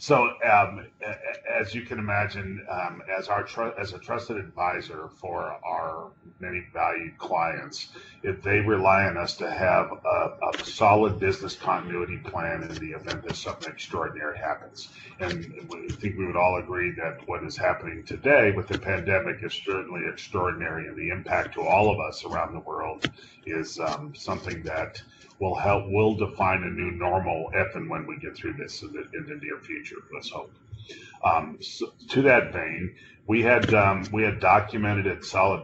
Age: 40-59